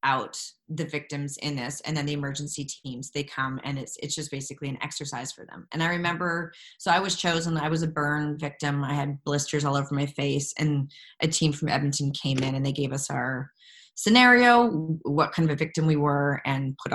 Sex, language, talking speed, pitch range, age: female, English, 220 wpm, 145-175 Hz, 20-39